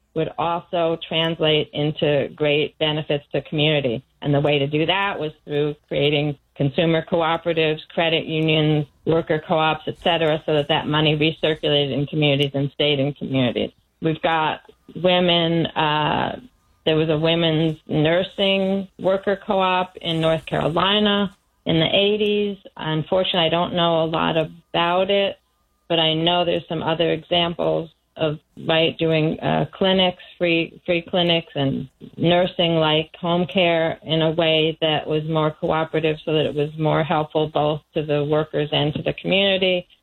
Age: 30-49